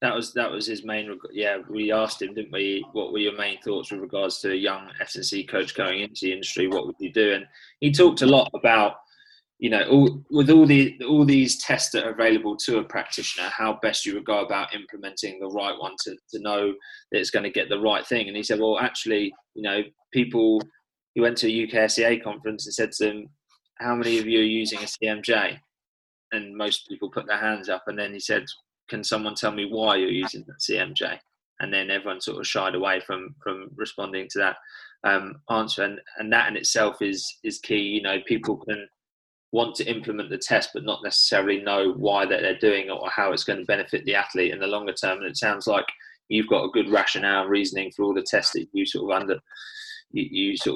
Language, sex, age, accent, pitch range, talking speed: English, male, 20-39, British, 100-125 Hz, 235 wpm